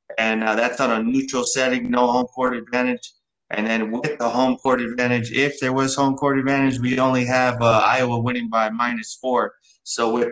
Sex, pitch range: male, 120-140 Hz